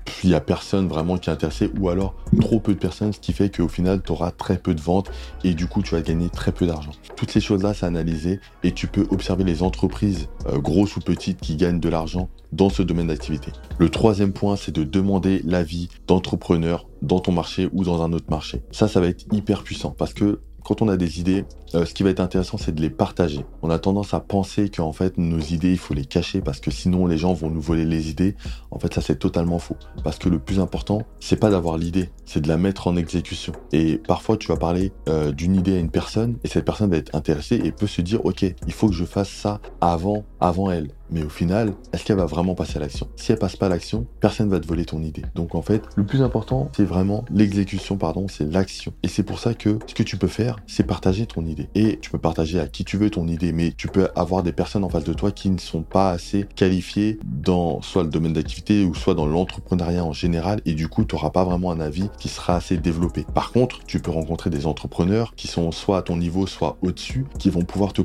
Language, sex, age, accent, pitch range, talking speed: French, male, 20-39, French, 80-100 Hz, 255 wpm